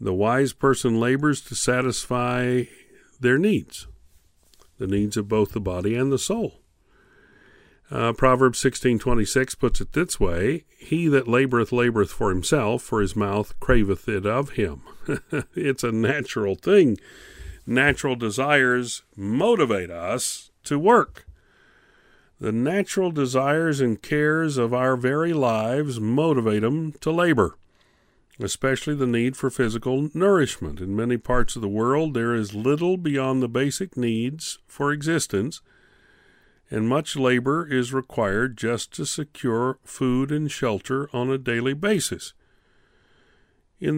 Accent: American